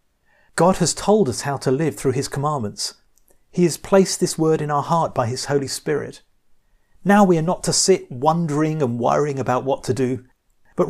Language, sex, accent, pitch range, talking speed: English, male, British, 120-150 Hz, 200 wpm